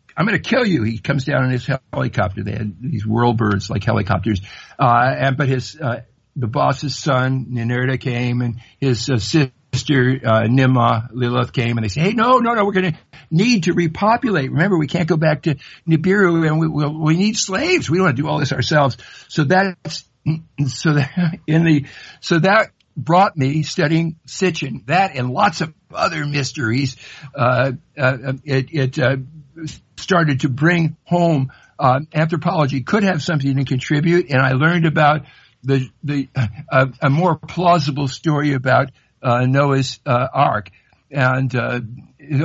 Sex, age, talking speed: male, 60-79, 175 wpm